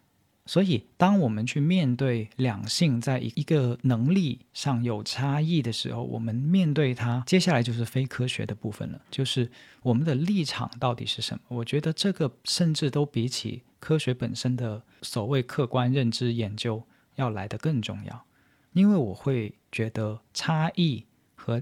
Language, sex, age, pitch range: Chinese, male, 40-59, 115-140 Hz